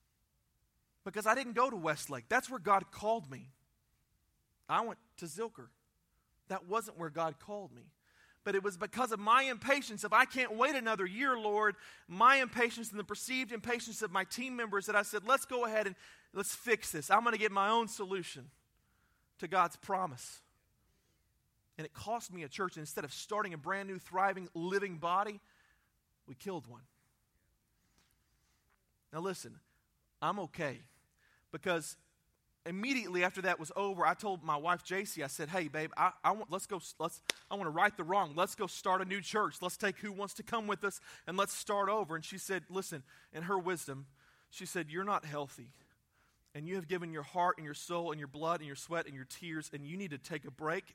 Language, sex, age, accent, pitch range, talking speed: English, male, 30-49, American, 155-205 Hz, 200 wpm